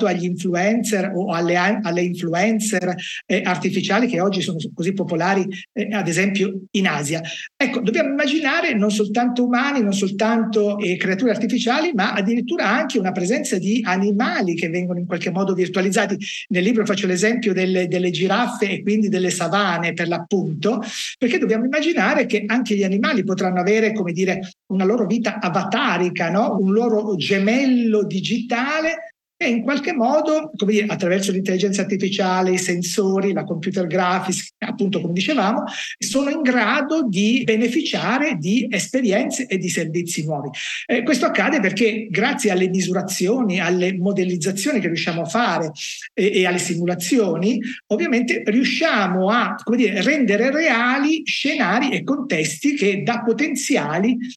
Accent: native